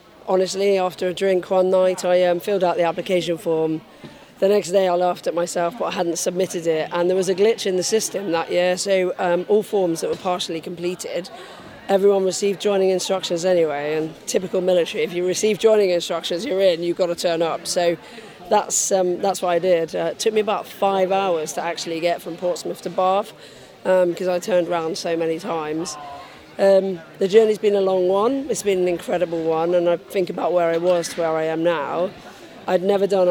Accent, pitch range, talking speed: British, 170-195 Hz, 215 wpm